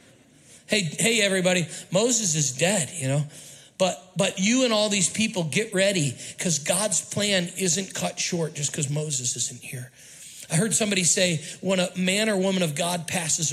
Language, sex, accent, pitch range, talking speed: English, male, American, 150-185 Hz, 180 wpm